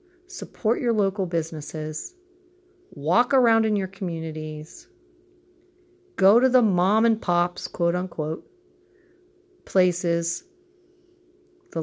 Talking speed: 95 wpm